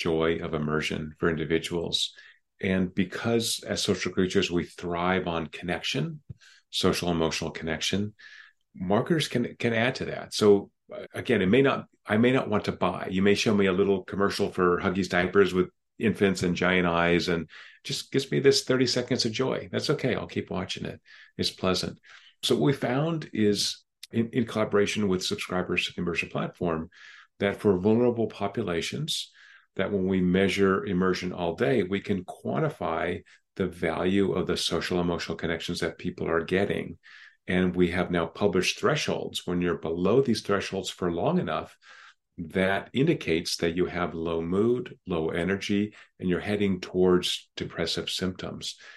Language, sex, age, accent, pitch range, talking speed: English, male, 40-59, American, 90-100 Hz, 165 wpm